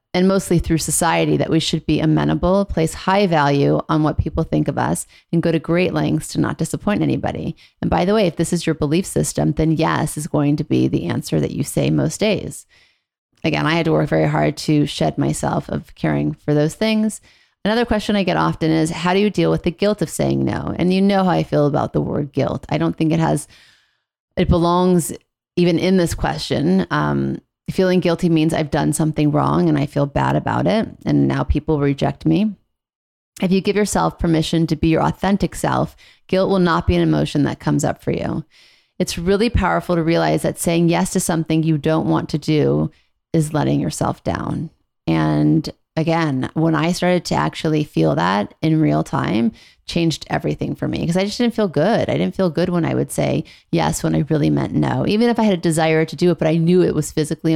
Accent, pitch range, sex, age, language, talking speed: American, 150-180 Hz, female, 30-49, English, 220 wpm